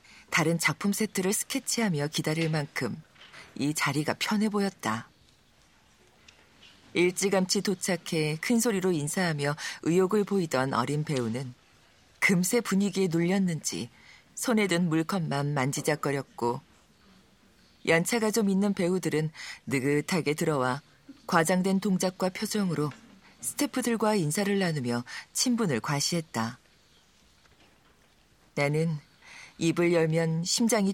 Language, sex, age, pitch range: Korean, female, 40-59, 145-195 Hz